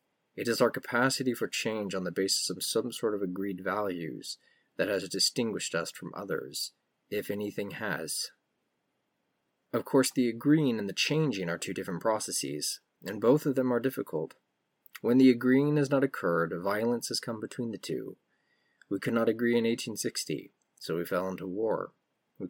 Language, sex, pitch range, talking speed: English, male, 100-130 Hz, 175 wpm